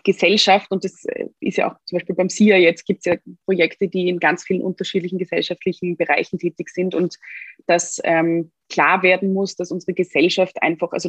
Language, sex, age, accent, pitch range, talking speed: German, female, 20-39, German, 165-185 Hz, 190 wpm